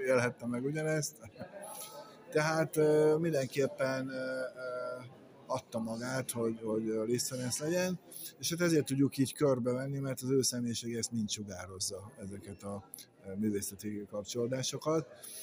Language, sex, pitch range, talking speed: Hungarian, male, 110-130 Hz, 100 wpm